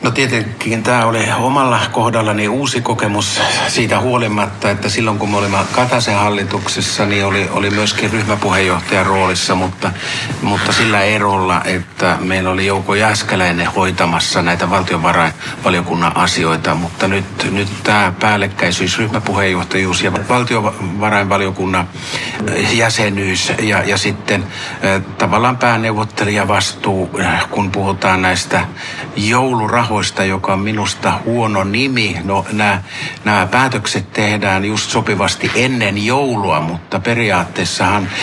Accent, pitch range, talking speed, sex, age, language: native, 95-115 Hz, 110 wpm, male, 60-79, Finnish